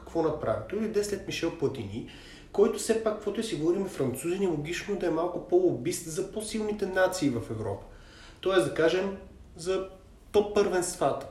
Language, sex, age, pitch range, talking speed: Bulgarian, male, 30-49, 140-200 Hz, 170 wpm